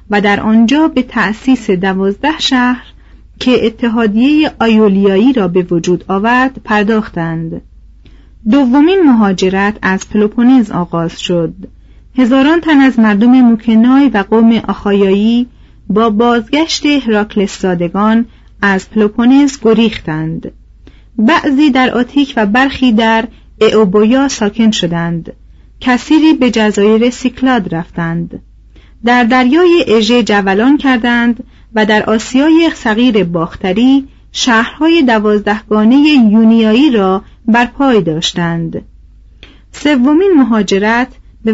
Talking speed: 100 wpm